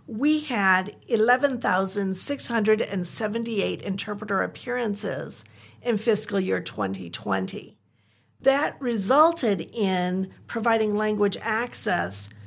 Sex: female